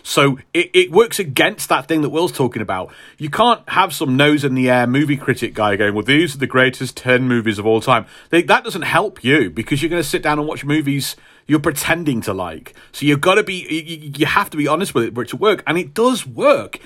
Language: English